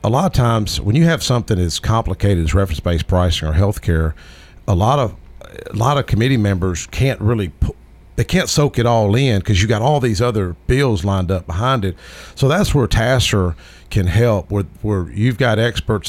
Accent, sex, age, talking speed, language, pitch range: American, male, 50-69, 205 wpm, English, 85-110 Hz